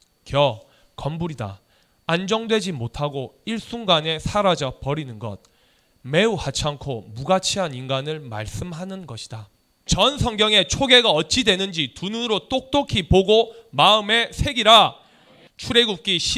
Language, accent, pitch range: Korean, native, 140-195 Hz